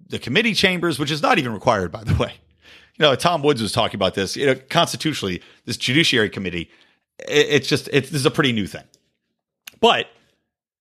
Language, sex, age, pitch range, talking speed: English, male, 40-59, 130-195 Hz, 200 wpm